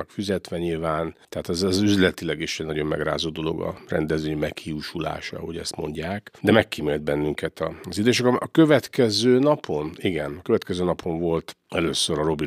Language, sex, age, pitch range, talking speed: Hungarian, male, 50-69, 80-100 Hz, 165 wpm